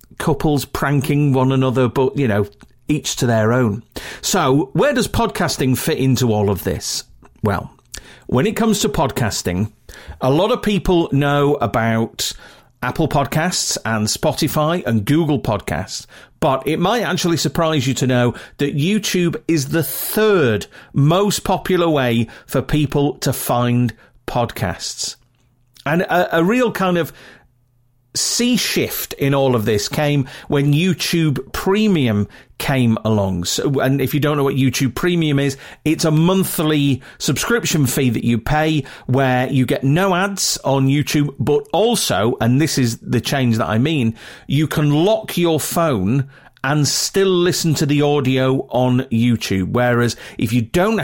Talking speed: 150 wpm